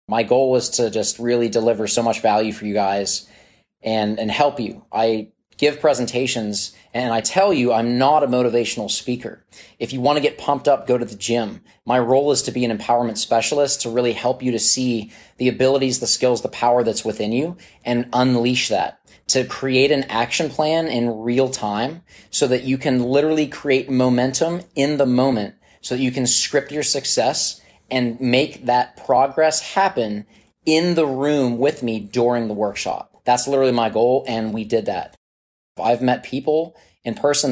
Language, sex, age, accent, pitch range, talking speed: English, male, 20-39, American, 115-130 Hz, 185 wpm